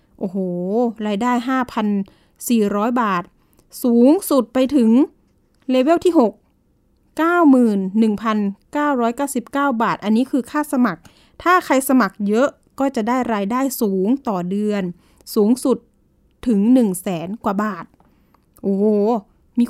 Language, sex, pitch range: Thai, female, 215-265 Hz